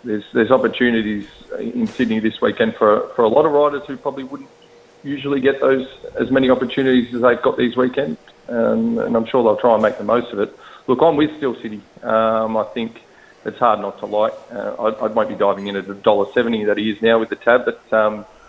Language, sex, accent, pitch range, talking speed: English, male, Australian, 100-125 Hz, 230 wpm